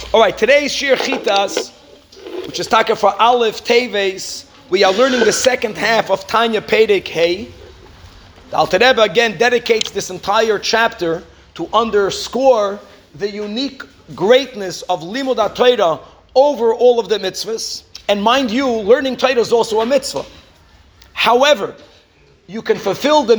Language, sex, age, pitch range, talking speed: English, male, 40-59, 195-255 Hz, 140 wpm